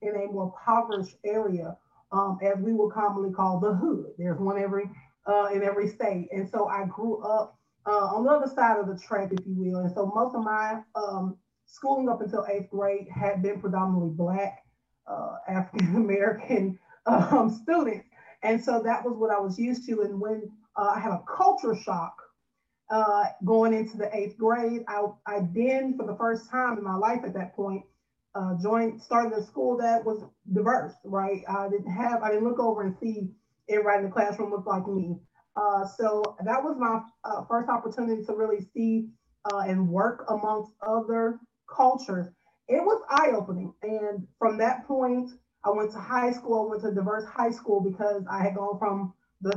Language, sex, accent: English, female, American